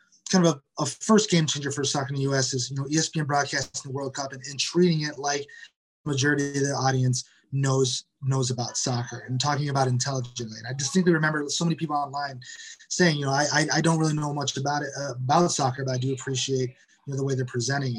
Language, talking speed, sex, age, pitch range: English, 235 wpm, male, 20-39, 130-155 Hz